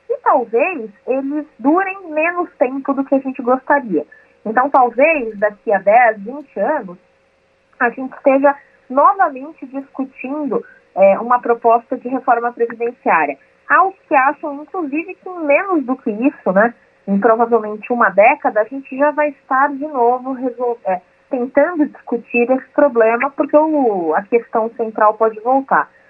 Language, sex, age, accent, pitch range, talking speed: Portuguese, female, 20-39, Brazilian, 235-290 Hz, 150 wpm